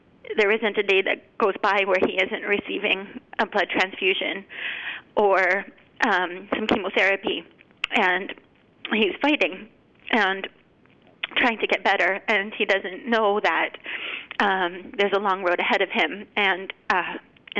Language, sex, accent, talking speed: English, female, American, 140 wpm